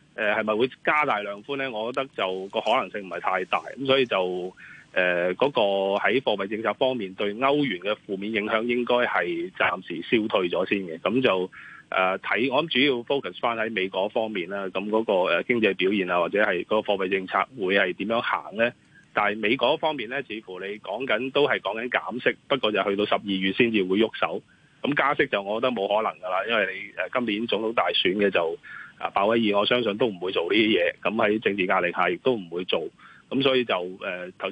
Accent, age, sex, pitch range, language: native, 20-39, male, 100-135 Hz, Chinese